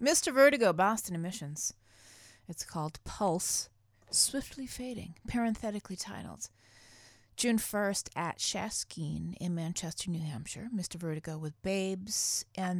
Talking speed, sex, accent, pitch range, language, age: 115 wpm, female, American, 155-210 Hz, English, 30-49